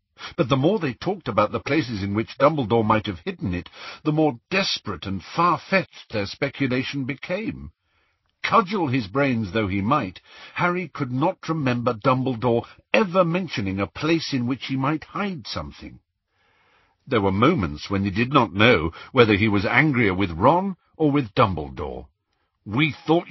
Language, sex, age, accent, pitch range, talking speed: English, male, 60-79, British, 100-155 Hz, 160 wpm